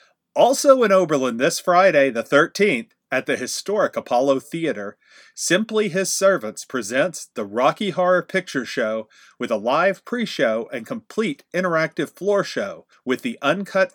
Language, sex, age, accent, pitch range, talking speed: English, male, 40-59, American, 135-195 Hz, 140 wpm